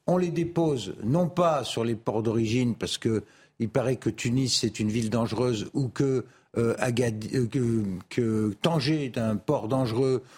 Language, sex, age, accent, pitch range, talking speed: French, male, 50-69, French, 115-170 Hz, 175 wpm